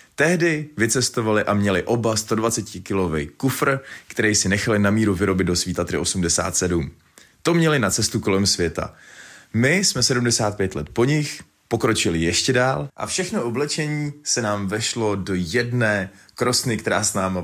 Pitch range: 95-125 Hz